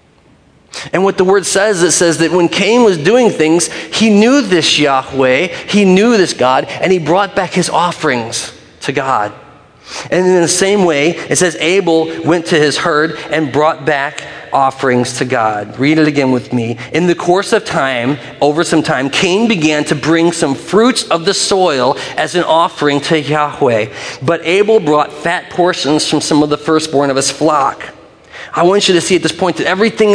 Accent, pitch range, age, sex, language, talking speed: American, 140-180 Hz, 40-59, male, English, 195 wpm